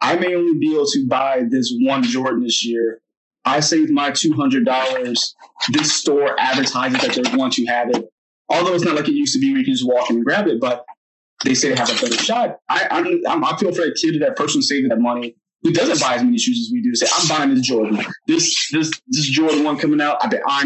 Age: 20-39